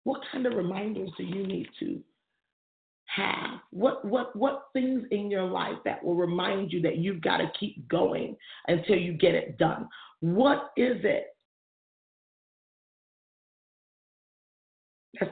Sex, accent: female, American